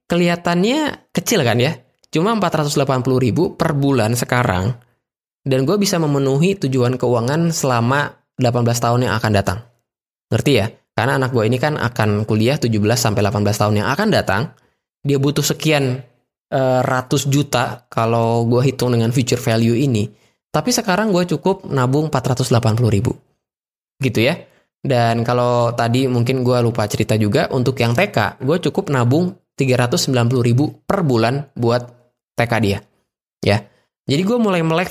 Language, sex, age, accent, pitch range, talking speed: Indonesian, male, 20-39, native, 115-145 Hz, 140 wpm